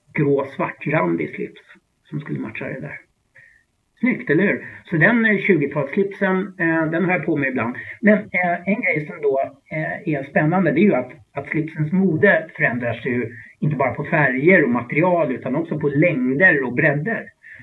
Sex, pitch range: male, 135-175 Hz